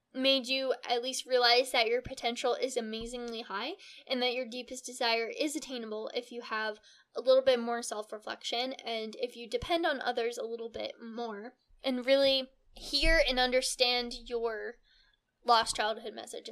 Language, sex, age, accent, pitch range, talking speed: English, female, 10-29, American, 235-275 Hz, 165 wpm